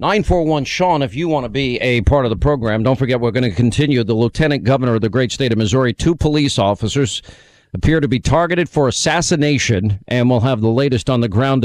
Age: 50-69